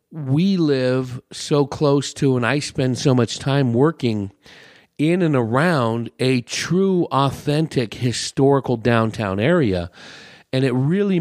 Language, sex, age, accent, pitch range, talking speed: English, male, 40-59, American, 100-140 Hz, 130 wpm